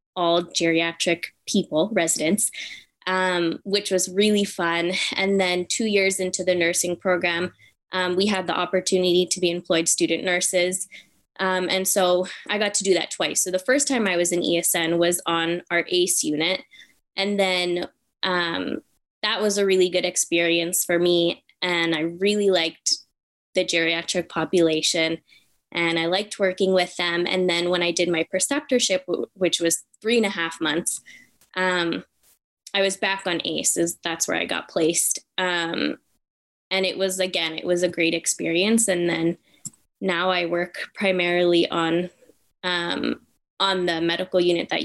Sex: female